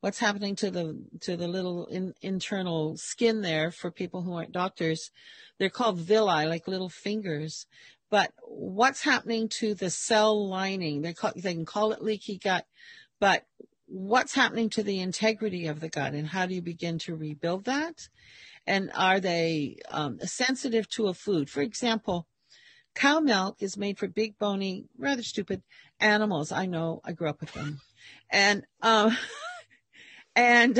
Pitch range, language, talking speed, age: 170-225 Hz, English, 165 wpm, 50-69